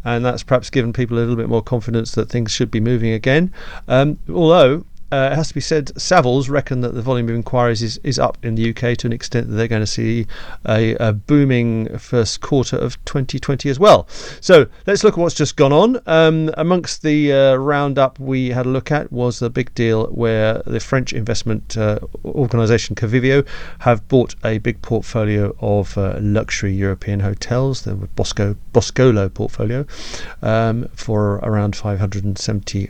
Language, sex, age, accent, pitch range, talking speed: English, male, 40-59, British, 110-135 Hz, 185 wpm